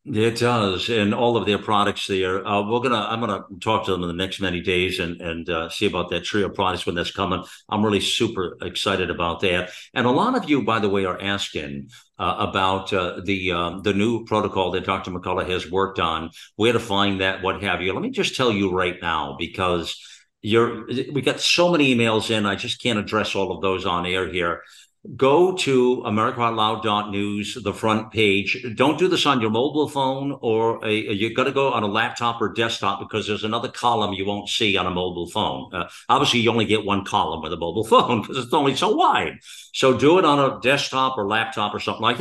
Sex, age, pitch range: male, 50-69, 95-120 Hz